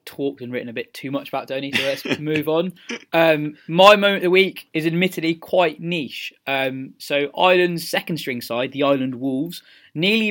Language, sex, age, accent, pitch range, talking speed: English, male, 20-39, British, 130-165 Hz, 190 wpm